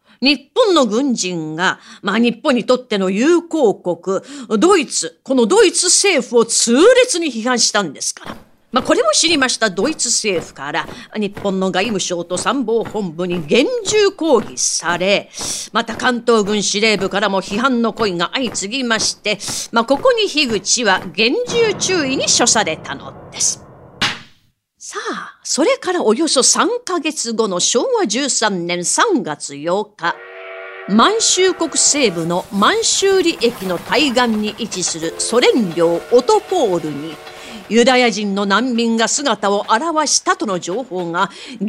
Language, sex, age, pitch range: Japanese, female, 40-59, 195-305 Hz